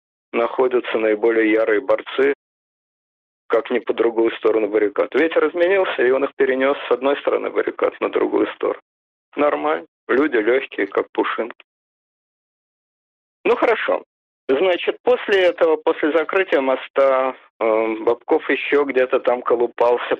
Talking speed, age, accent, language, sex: 120 wpm, 50-69, native, Russian, male